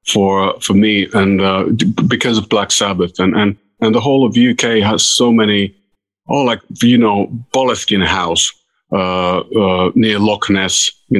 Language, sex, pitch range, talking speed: English, male, 100-130 Hz, 175 wpm